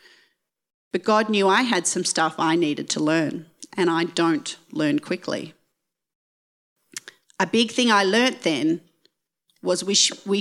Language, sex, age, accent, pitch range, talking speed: English, female, 40-59, Australian, 165-215 Hz, 145 wpm